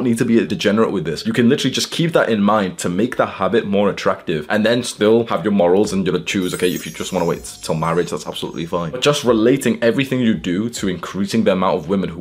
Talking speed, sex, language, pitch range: 275 wpm, male, English, 90-120 Hz